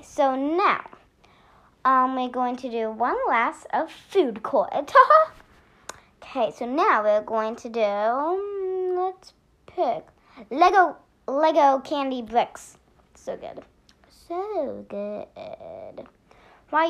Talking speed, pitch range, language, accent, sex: 110 wpm, 235-330 Hz, English, American, female